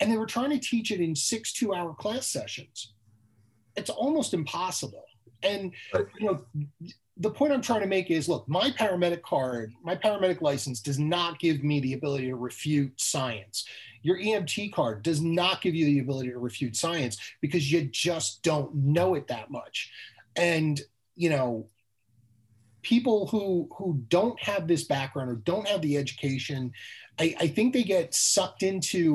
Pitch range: 135-195 Hz